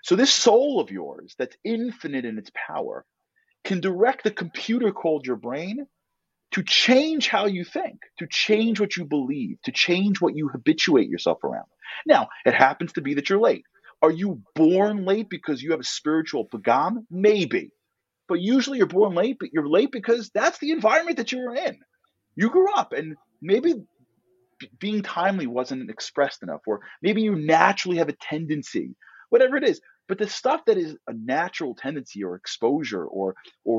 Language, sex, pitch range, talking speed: English, male, 155-260 Hz, 180 wpm